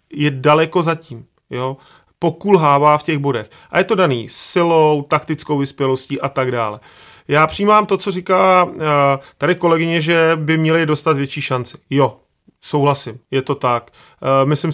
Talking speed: 155 wpm